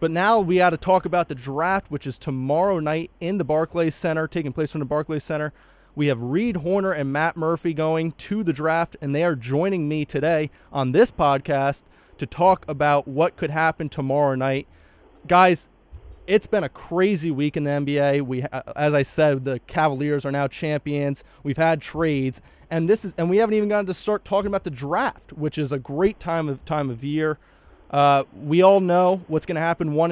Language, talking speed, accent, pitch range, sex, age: English, 205 wpm, American, 140-165 Hz, male, 30-49